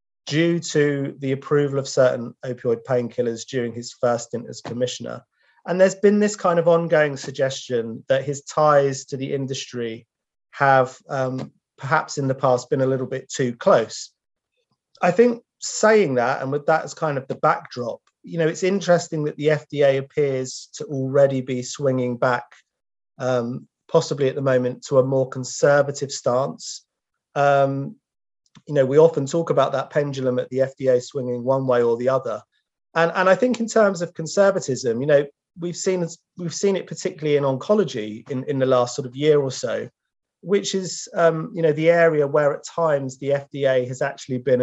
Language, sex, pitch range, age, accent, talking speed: English, male, 125-155 Hz, 30-49, British, 180 wpm